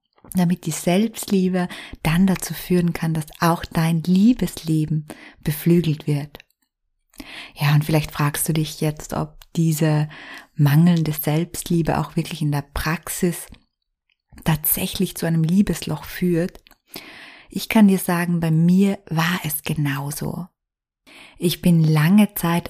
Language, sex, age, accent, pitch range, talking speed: German, female, 20-39, German, 155-185 Hz, 125 wpm